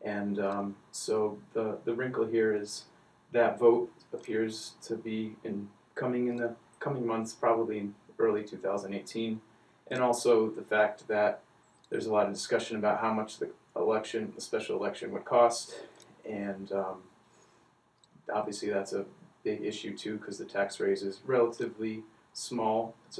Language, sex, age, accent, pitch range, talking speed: English, male, 30-49, American, 105-120 Hz, 155 wpm